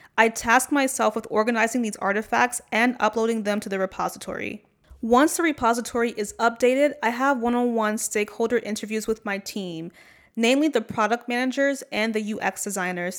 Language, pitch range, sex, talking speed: English, 200-245 Hz, female, 155 wpm